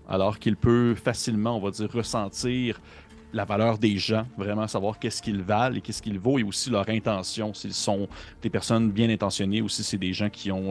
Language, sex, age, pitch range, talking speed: French, male, 30-49, 95-110 Hz, 215 wpm